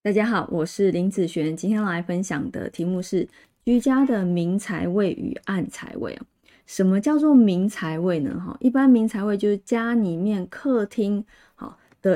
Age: 20-39